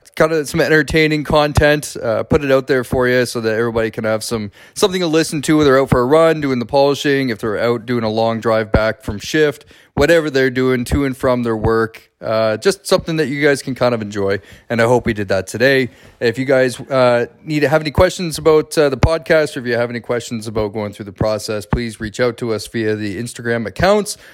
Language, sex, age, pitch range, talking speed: English, male, 30-49, 110-140 Hz, 245 wpm